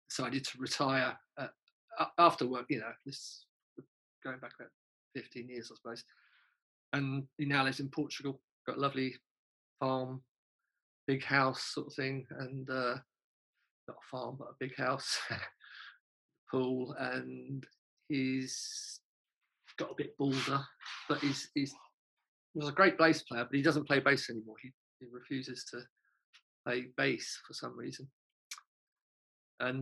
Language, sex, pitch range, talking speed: English, male, 120-140 Hz, 145 wpm